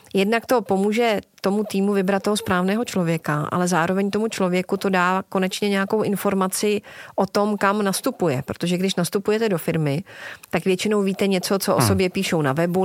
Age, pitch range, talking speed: 30-49, 180-210 Hz, 175 wpm